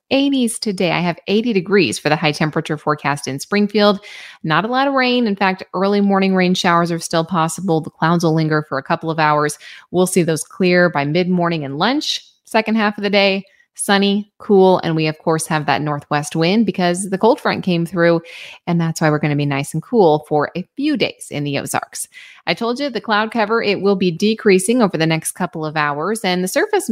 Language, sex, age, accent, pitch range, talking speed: English, female, 20-39, American, 160-210 Hz, 225 wpm